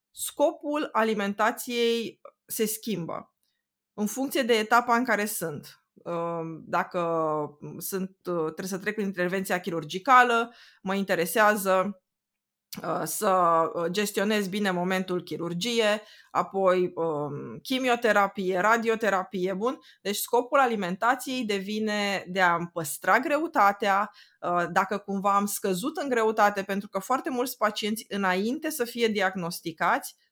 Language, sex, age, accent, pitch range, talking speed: Romanian, female, 20-39, native, 180-220 Hz, 110 wpm